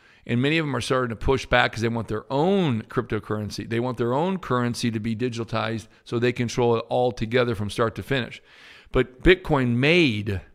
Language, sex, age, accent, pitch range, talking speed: English, male, 50-69, American, 110-135 Hz, 205 wpm